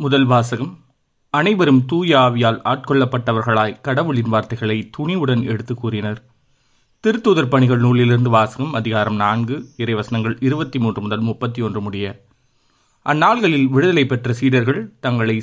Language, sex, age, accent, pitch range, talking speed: Tamil, male, 30-49, native, 120-140 Hz, 100 wpm